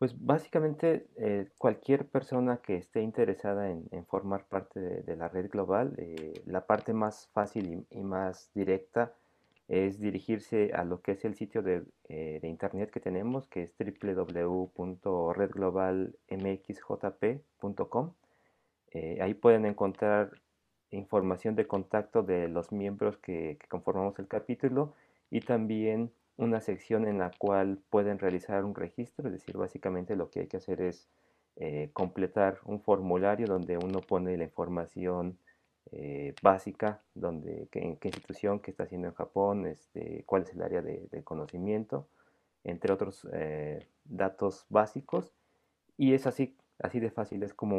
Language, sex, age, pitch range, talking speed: Spanish, male, 40-59, 95-110 Hz, 150 wpm